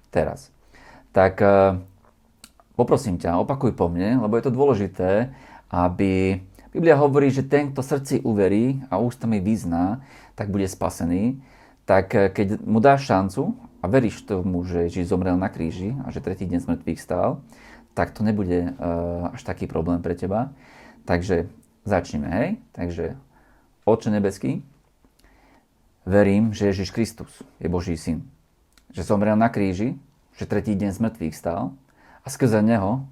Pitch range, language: 95-125 Hz, Slovak